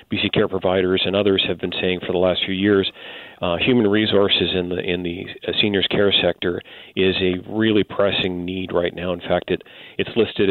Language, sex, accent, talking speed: English, male, American, 200 wpm